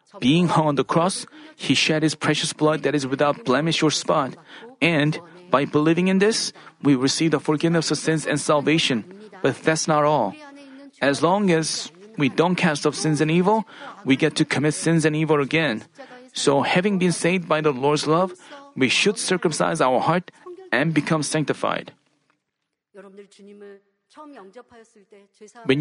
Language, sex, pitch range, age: Korean, male, 155-205 Hz, 40-59